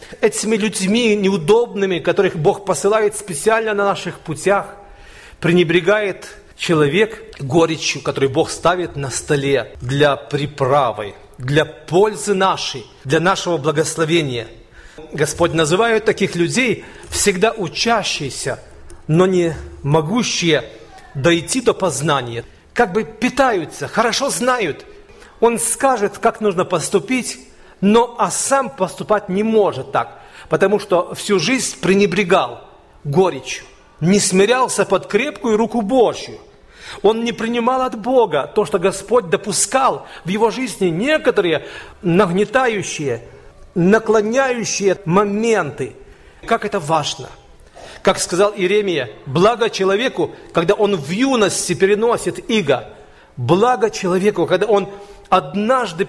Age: 40-59